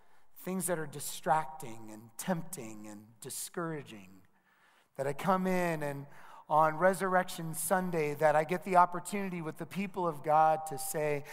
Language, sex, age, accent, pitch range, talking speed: English, male, 40-59, American, 120-165 Hz, 150 wpm